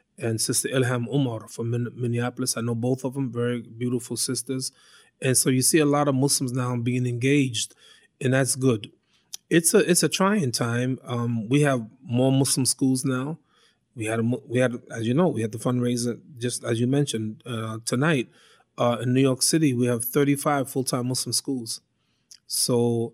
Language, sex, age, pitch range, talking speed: English, male, 30-49, 120-140 Hz, 185 wpm